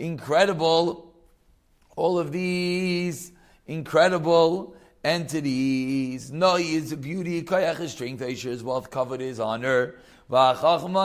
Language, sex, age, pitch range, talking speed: English, male, 40-59, 130-170 Hz, 100 wpm